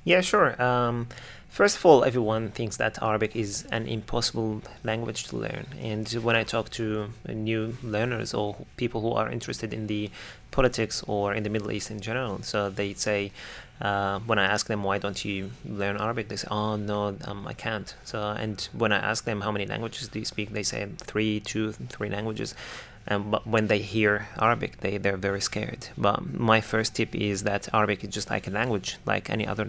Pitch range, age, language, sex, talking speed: 100-115 Hz, 30-49, English, male, 200 wpm